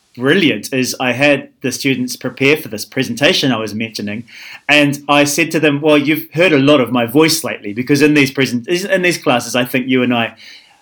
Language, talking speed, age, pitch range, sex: English, 215 wpm, 30-49, 120-145 Hz, male